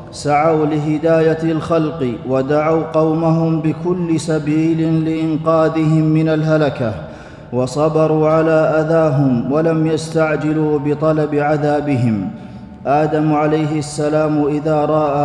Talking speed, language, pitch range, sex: 85 wpm, Arabic, 150-160 Hz, male